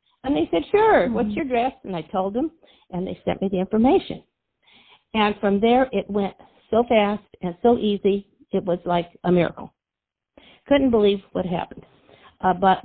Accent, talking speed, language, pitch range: American, 180 wpm, English, 190-235 Hz